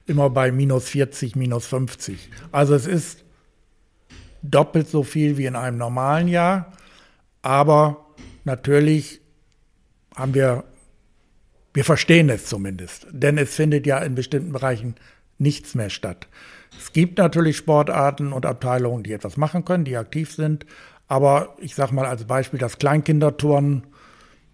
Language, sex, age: German, male, 60-79